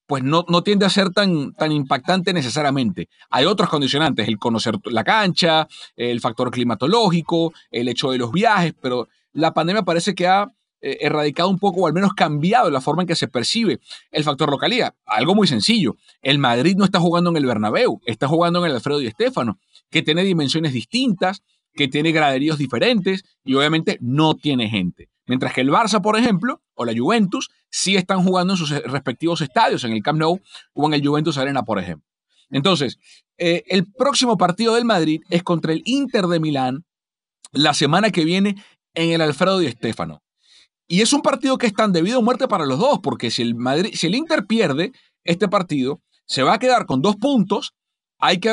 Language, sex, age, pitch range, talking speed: English, male, 30-49, 140-200 Hz, 195 wpm